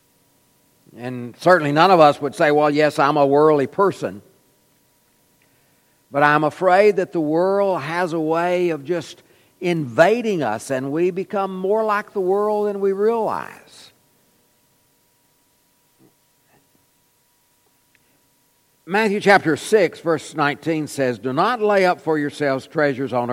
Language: English